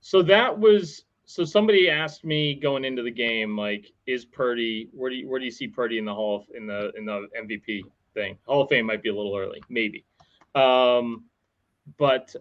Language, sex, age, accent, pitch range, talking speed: English, male, 30-49, American, 120-155 Hz, 210 wpm